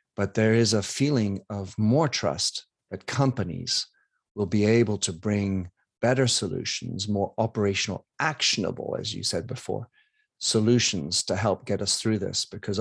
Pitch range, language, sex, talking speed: 100-120 Hz, English, male, 150 wpm